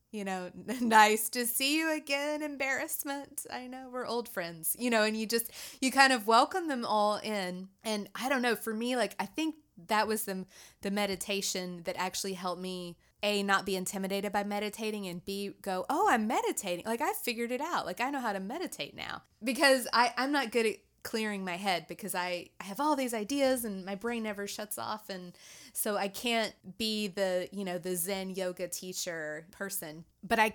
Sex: female